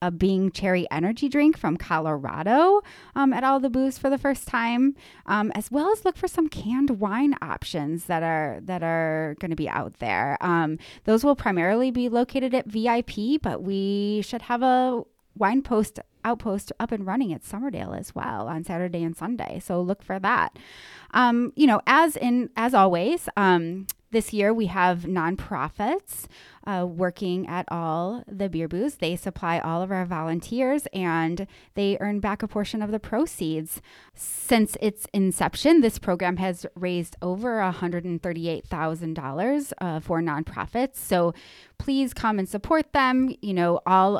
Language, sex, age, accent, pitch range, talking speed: English, female, 20-39, American, 175-240 Hz, 165 wpm